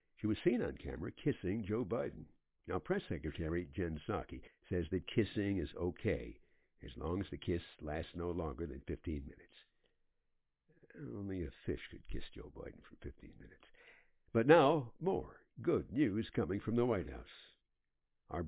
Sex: male